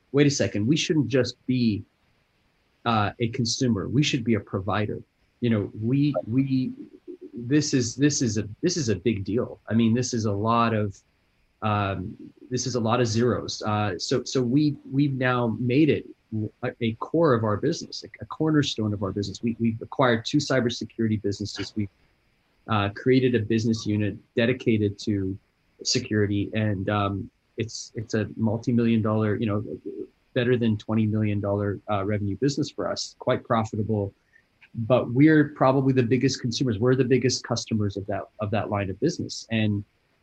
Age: 30-49